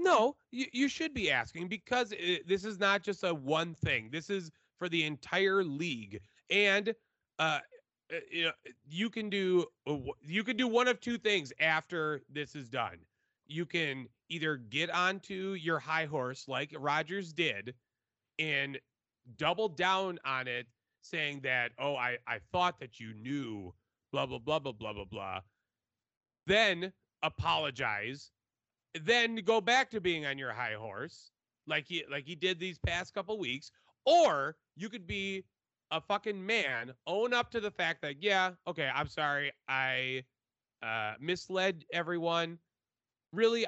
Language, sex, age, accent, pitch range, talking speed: English, male, 30-49, American, 135-200 Hz, 155 wpm